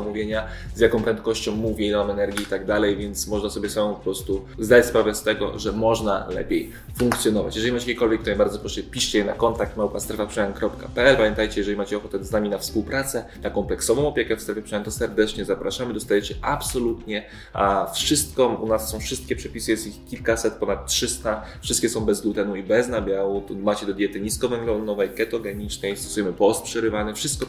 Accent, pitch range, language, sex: native, 100-115 Hz, Polish, male